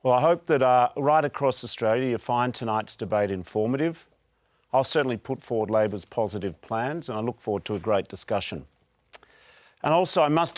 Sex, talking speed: male, 180 wpm